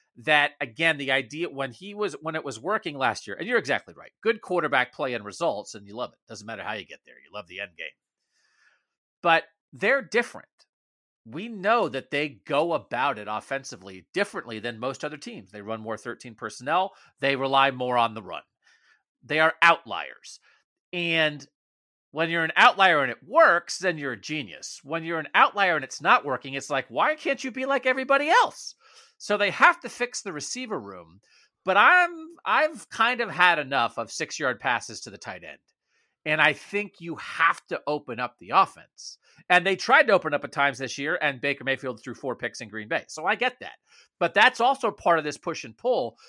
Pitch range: 135-225 Hz